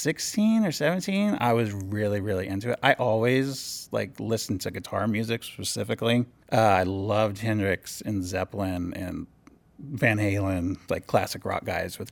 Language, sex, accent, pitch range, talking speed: English, male, American, 95-120 Hz, 155 wpm